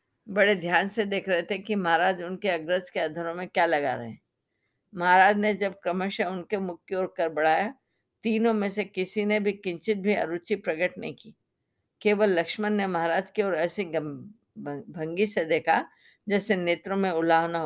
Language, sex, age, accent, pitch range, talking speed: Hindi, female, 50-69, native, 170-205 Hz, 175 wpm